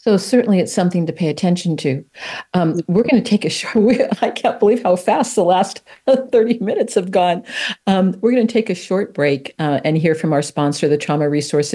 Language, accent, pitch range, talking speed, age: English, American, 145-175 Hz, 225 wpm, 50-69